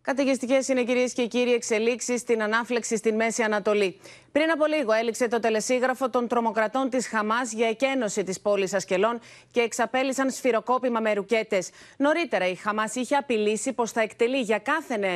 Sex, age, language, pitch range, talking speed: female, 30-49, Greek, 215-270 Hz, 165 wpm